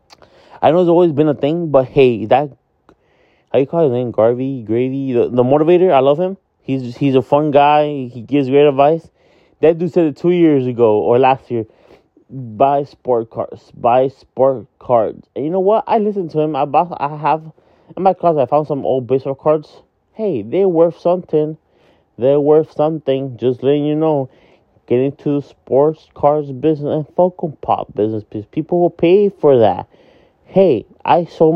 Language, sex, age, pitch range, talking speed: English, male, 20-39, 125-160 Hz, 190 wpm